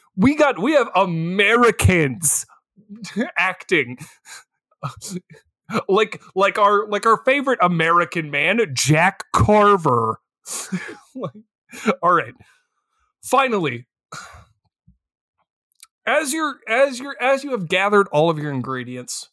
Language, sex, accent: English, male, American